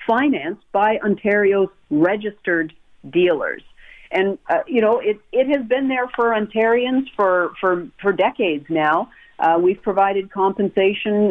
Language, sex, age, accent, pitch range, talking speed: English, female, 50-69, American, 175-215 Hz, 135 wpm